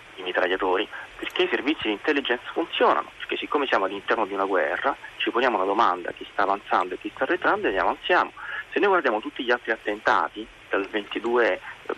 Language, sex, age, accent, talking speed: Italian, male, 30-49, native, 185 wpm